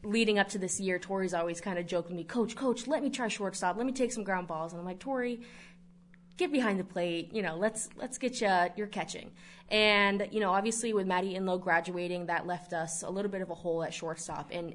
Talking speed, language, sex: 240 wpm, English, female